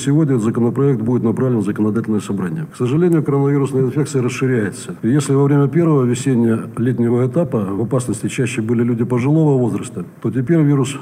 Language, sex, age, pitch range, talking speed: Russian, male, 60-79, 115-140 Hz, 165 wpm